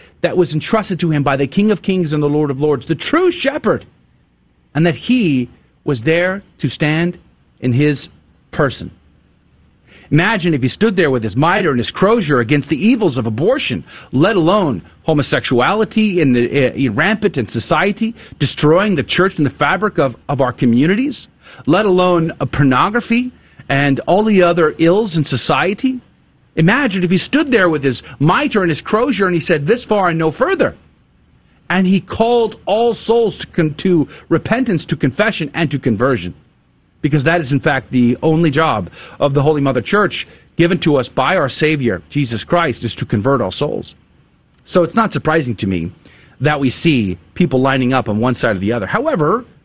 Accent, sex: American, male